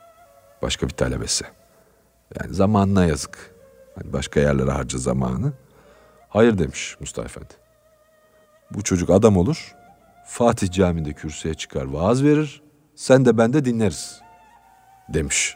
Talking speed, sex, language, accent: 115 wpm, male, Turkish, native